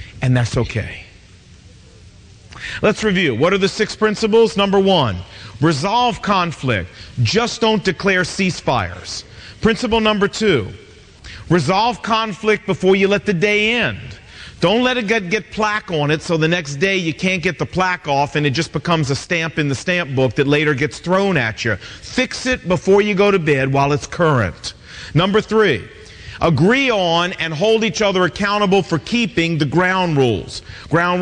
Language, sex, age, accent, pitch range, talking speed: English, male, 40-59, American, 135-210 Hz, 170 wpm